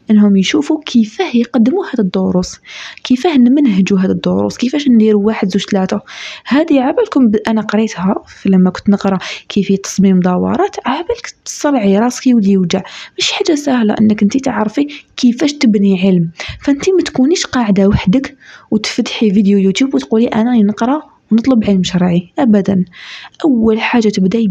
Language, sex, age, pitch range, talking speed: Arabic, female, 20-39, 205-275 Hz, 140 wpm